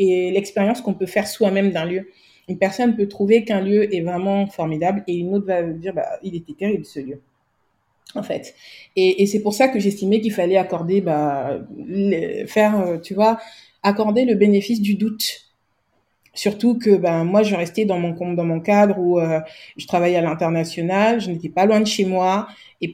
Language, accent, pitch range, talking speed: French, French, 170-205 Hz, 195 wpm